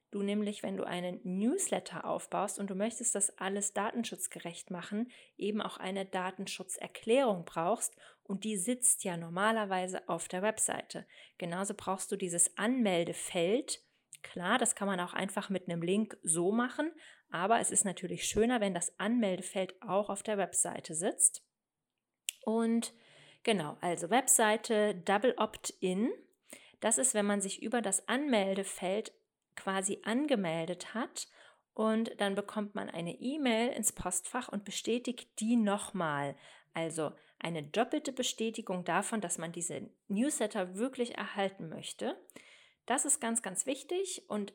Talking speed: 140 wpm